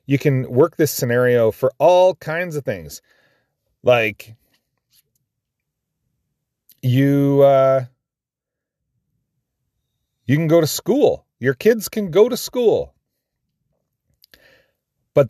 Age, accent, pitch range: 40-59, American, 125-165 Hz